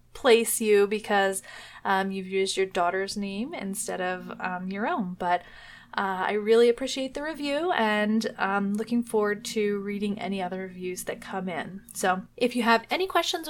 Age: 20-39